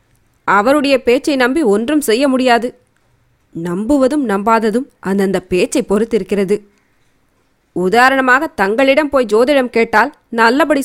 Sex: female